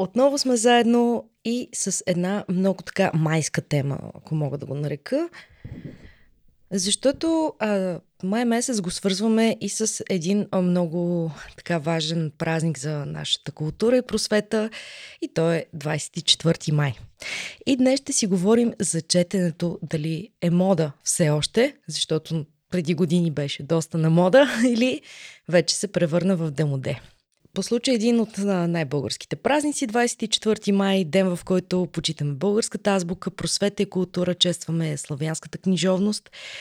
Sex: female